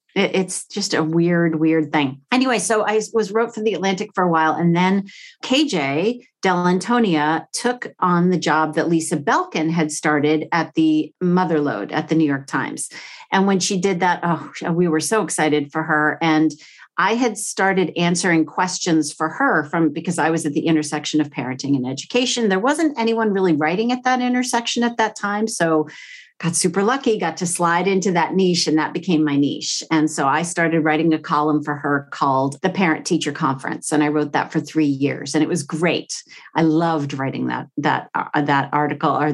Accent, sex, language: American, female, English